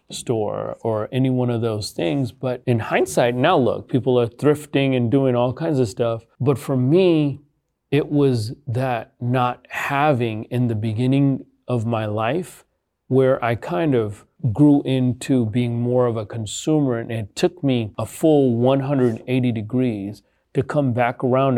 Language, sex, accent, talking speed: English, male, American, 160 wpm